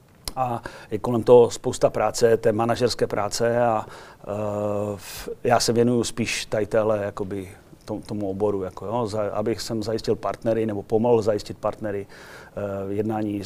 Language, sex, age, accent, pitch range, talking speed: Czech, male, 40-59, native, 105-120 Hz, 155 wpm